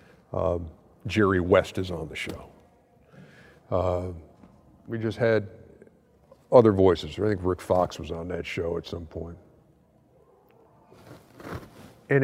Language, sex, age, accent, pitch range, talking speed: English, male, 50-69, American, 95-125 Hz, 125 wpm